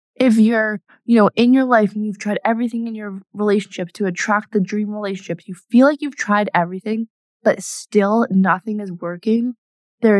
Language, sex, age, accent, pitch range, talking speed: English, female, 20-39, American, 180-210 Hz, 180 wpm